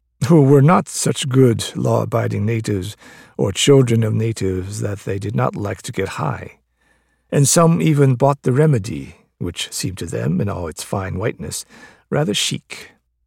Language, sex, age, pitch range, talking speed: English, male, 50-69, 100-145 Hz, 165 wpm